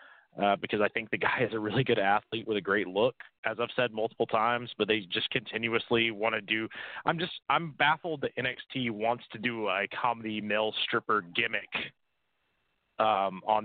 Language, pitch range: English, 110-150 Hz